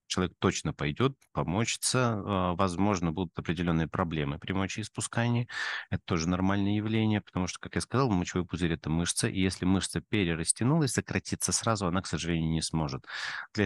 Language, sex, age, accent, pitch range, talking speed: Russian, male, 30-49, native, 85-110 Hz, 155 wpm